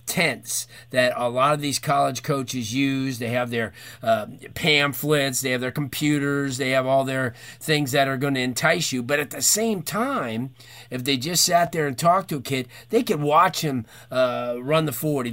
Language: English